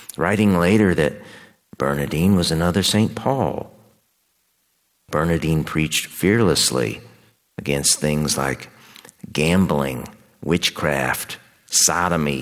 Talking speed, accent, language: 80 wpm, American, English